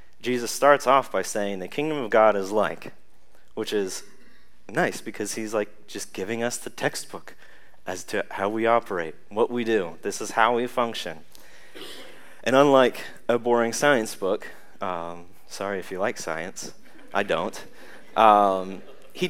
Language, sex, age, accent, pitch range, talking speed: English, male, 30-49, American, 95-120 Hz, 160 wpm